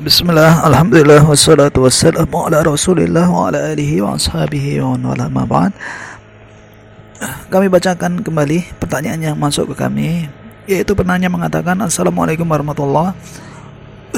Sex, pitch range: male, 110-180 Hz